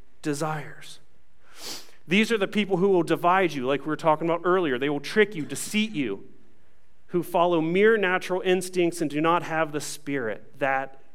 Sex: male